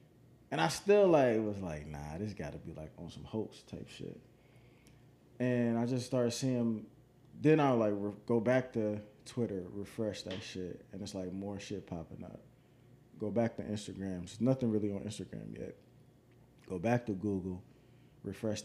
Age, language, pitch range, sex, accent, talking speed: 20-39, English, 100-130 Hz, male, American, 175 wpm